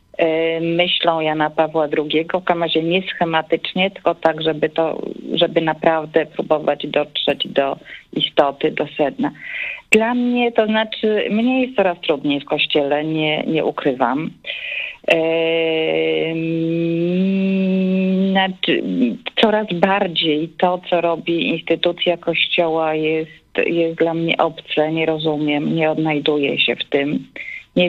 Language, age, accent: Polish, 40-59, native